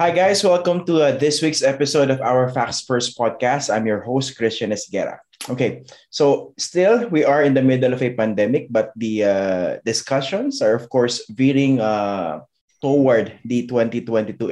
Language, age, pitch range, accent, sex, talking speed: English, 20-39, 110-135 Hz, Filipino, male, 170 wpm